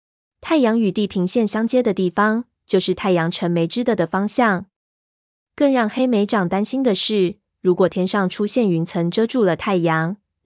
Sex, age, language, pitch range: female, 20-39, Chinese, 180-220 Hz